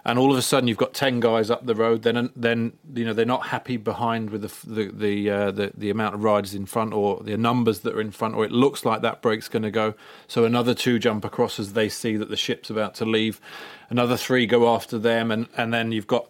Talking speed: 265 wpm